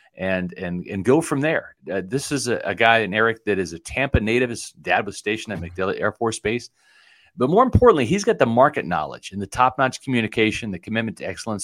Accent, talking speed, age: American, 230 wpm, 40-59